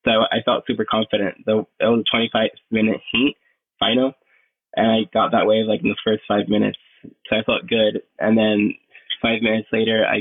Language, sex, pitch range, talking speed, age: English, male, 105-115 Hz, 190 wpm, 10-29